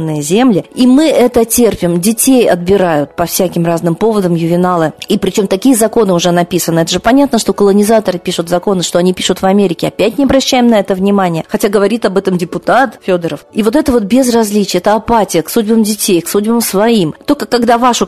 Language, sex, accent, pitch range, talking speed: Russian, female, native, 180-230 Hz, 190 wpm